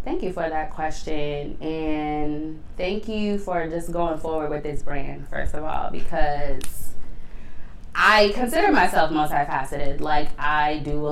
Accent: American